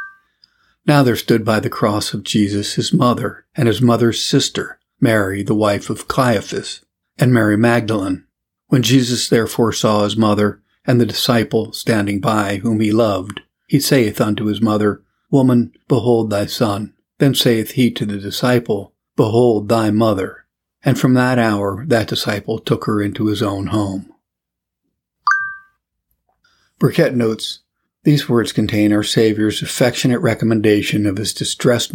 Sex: male